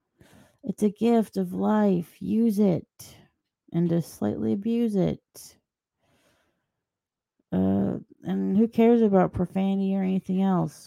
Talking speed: 115 wpm